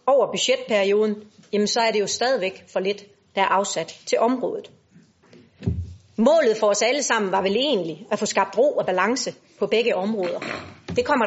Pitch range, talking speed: 200-260 Hz, 180 wpm